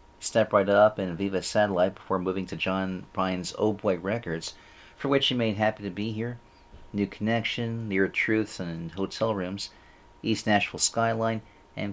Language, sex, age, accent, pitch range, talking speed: English, male, 40-59, American, 85-110 Hz, 165 wpm